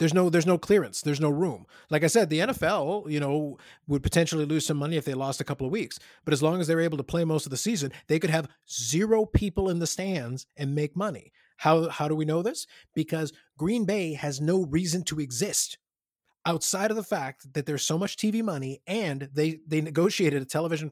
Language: English